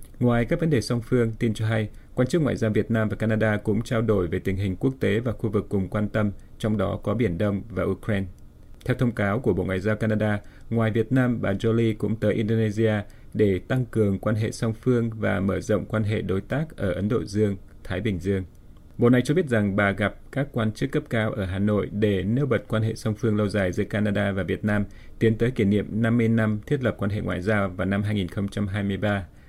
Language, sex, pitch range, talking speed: Vietnamese, male, 100-115 Hz, 240 wpm